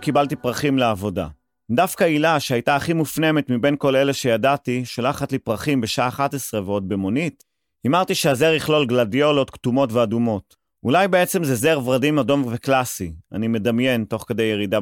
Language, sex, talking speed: Hebrew, male, 150 wpm